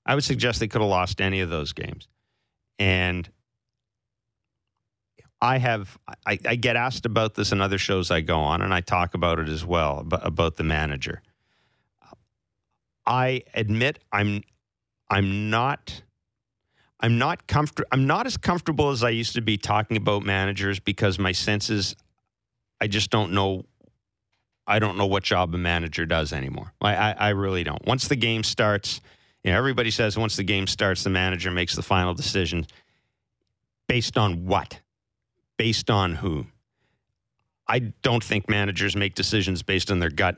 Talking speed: 165 wpm